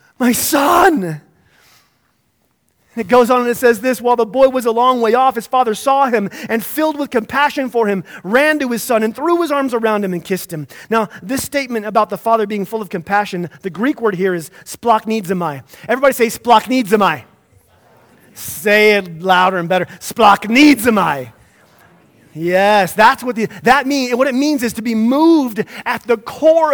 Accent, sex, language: American, male, English